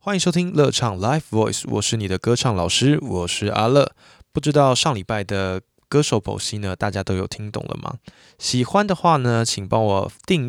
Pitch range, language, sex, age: 100-140 Hz, Chinese, male, 20-39